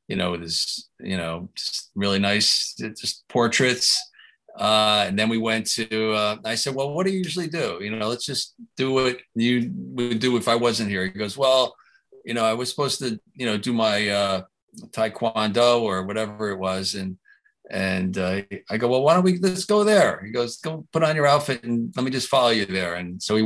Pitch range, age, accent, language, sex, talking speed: 100-125 Hz, 40-59, American, English, male, 220 wpm